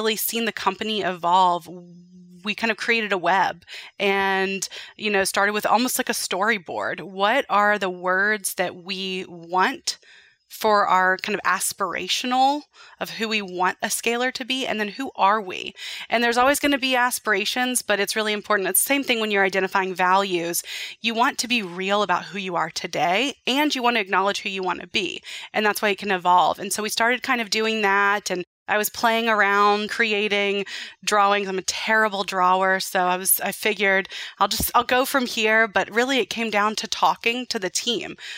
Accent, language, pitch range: American, English, 190-235 Hz